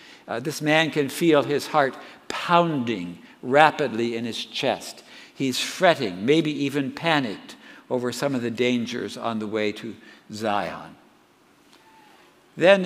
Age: 60-79